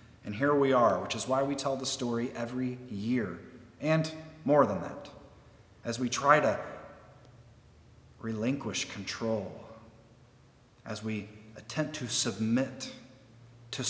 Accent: American